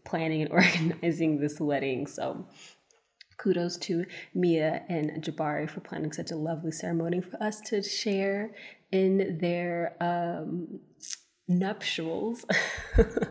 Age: 20-39